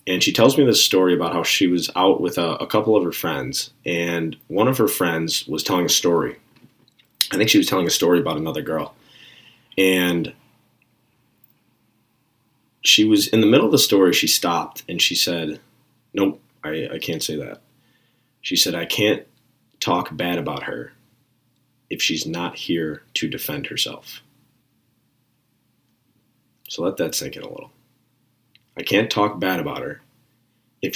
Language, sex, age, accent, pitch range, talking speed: English, male, 30-49, American, 90-120 Hz, 165 wpm